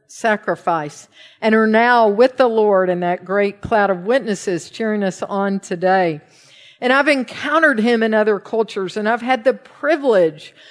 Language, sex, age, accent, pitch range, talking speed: English, female, 50-69, American, 210-265 Hz, 165 wpm